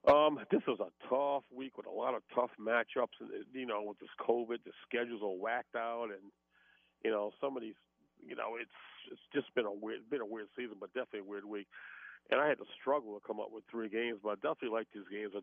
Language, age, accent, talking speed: English, 50-69, American, 250 wpm